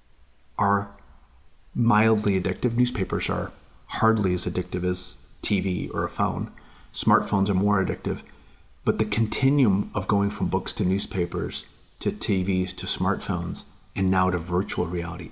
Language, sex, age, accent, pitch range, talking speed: English, male, 30-49, American, 90-100 Hz, 135 wpm